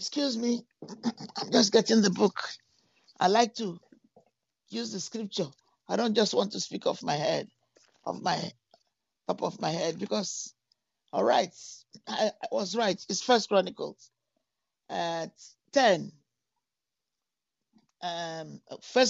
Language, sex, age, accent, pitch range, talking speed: English, male, 50-69, Nigerian, 180-235 Hz, 130 wpm